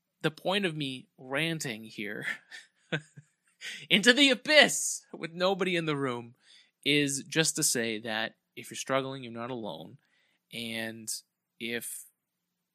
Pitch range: 115-155 Hz